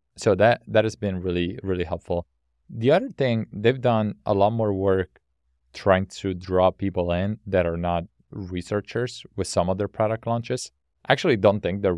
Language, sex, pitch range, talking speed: English, male, 85-105 Hz, 185 wpm